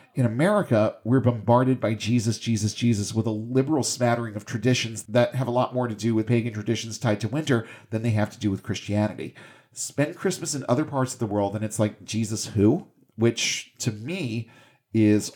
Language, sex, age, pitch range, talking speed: English, male, 40-59, 110-130 Hz, 200 wpm